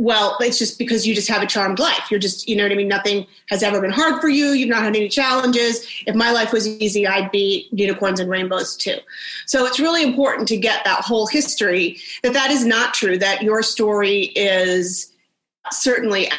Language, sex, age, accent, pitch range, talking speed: English, female, 30-49, American, 195-235 Hz, 215 wpm